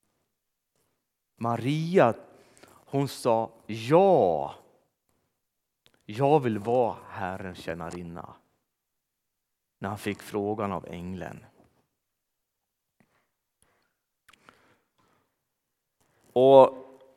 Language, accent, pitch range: Swedish, native, 95-130 Hz